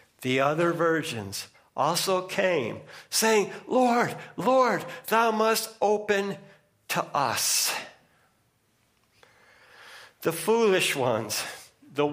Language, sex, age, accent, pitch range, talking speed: English, male, 60-79, American, 140-195 Hz, 85 wpm